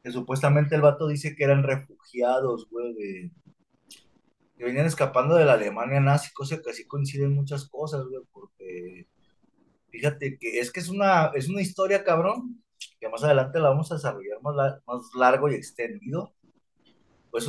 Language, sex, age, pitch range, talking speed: Spanish, male, 20-39, 125-170 Hz, 165 wpm